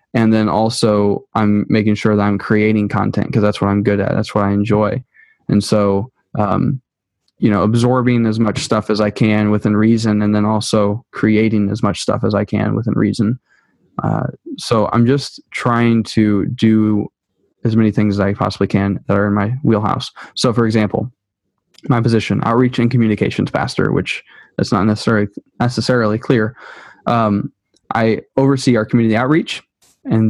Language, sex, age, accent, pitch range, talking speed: English, male, 20-39, American, 105-120 Hz, 170 wpm